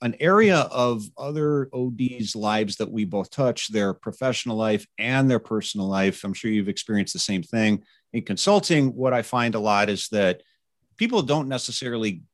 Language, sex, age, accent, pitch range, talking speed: English, male, 40-59, American, 100-130 Hz, 175 wpm